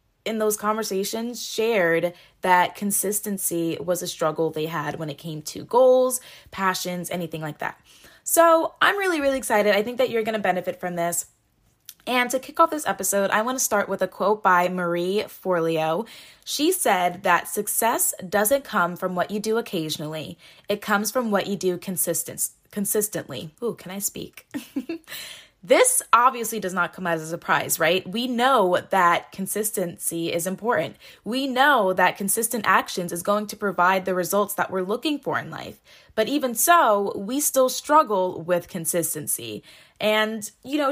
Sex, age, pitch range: female, 10-29, 175-250 Hz